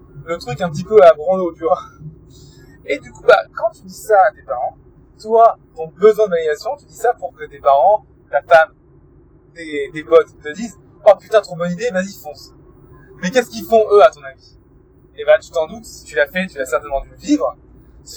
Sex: male